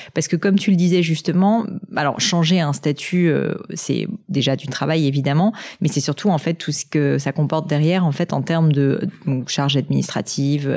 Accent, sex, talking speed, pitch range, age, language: French, female, 190 wpm, 145-175 Hz, 30-49, French